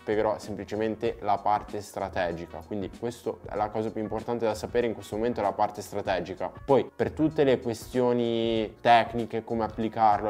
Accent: native